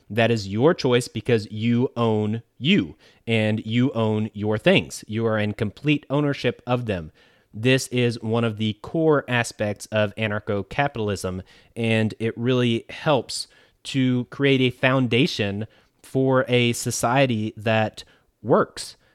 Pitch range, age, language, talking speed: 110-130 Hz, 30-49, English, 130 wpm